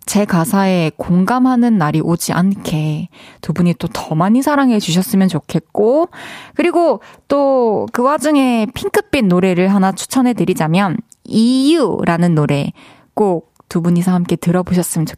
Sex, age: female, 20-39